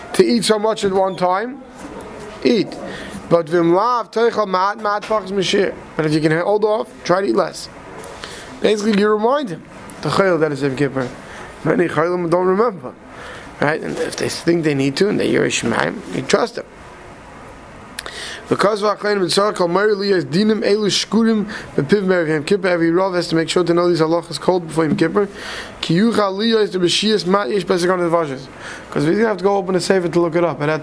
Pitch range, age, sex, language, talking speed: 165-200 Hz, 20-39, male, English, 120 wpm